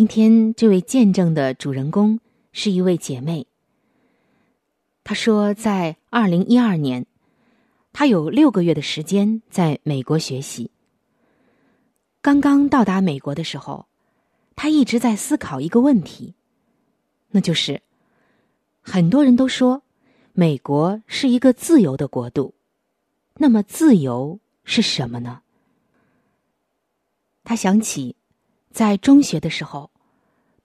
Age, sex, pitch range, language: 20-39, female, 165-240 Hz, Chinese